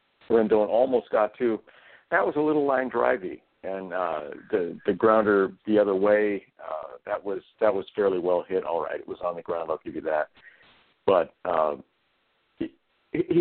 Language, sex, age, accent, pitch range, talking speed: English, male, 50-69, American, 100-130 Hz, 180 wpm